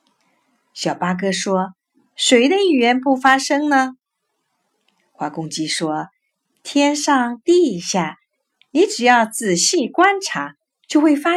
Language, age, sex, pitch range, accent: Chinese, 50-69, female, 205-305 Hz, native